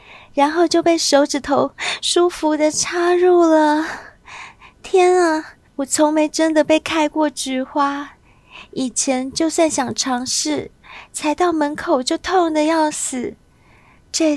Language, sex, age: Chinese, female, 30-49